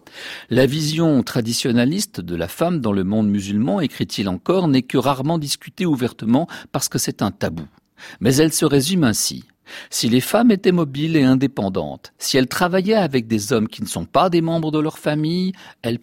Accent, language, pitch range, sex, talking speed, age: French, French, 105-160 Hz, male, 185 wpm, 50-69